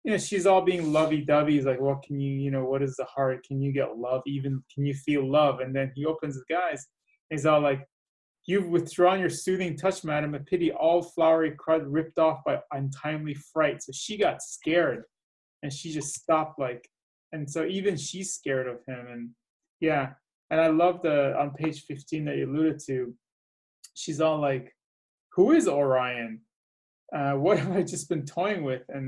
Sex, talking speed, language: male, 195 wpm, English